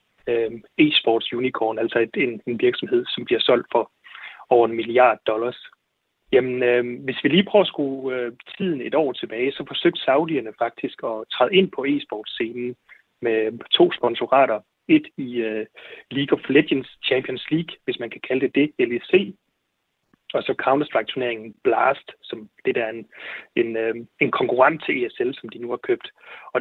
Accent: native